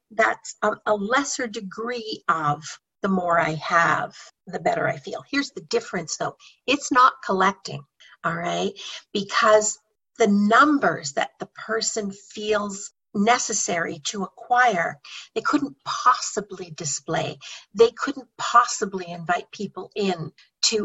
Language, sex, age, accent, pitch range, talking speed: English, female, 50-69, American, 190-235 Hz, 125 wpm